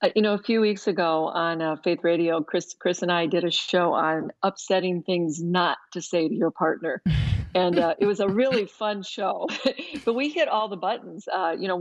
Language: English